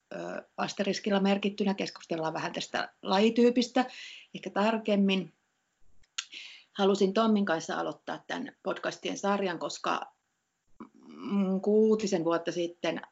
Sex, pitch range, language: female, 175-220 Hz, Finnish